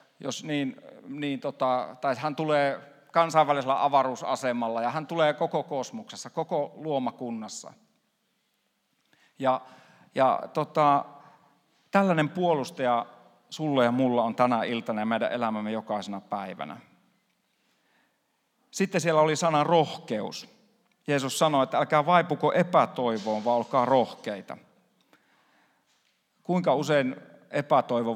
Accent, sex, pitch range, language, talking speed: native, male, 120-155 Hz, Finnish, 105 wpm